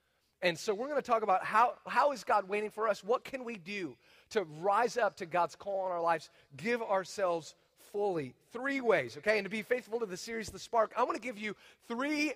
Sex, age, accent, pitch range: male, 40-59, American, 200-250 Hz